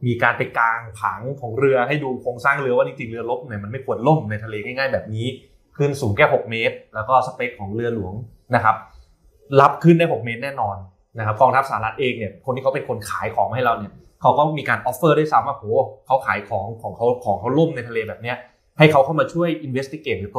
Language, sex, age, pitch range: Thai, male, 20-39, 110-145 Hz